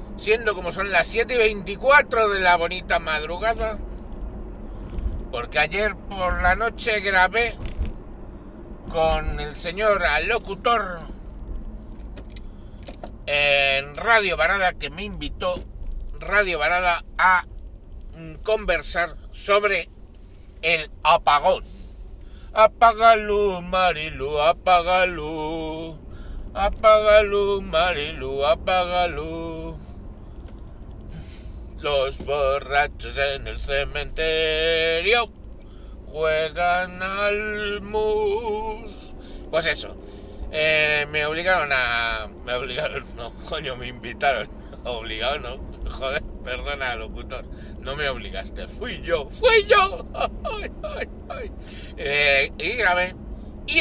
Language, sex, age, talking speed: Spanish, male, 60-79, 90 wpm